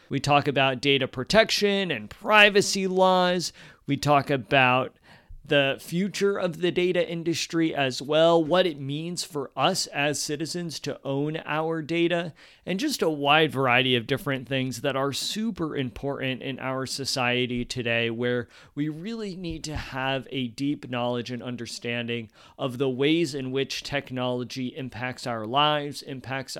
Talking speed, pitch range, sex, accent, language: 150 wpm, 130-170 Hz, male, American, English